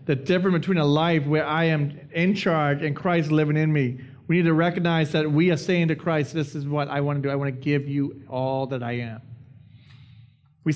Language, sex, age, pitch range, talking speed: English, male, 30-49, 140-170 Hz, 235 wpm